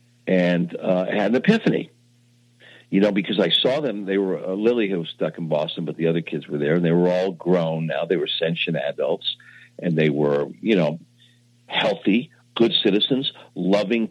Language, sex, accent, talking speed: English, male, American, 195 wpm